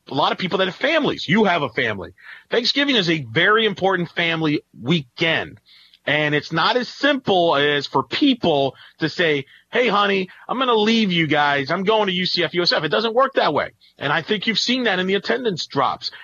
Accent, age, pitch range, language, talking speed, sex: American, 40-59, 155-210 Hz, English, 205 wpm, male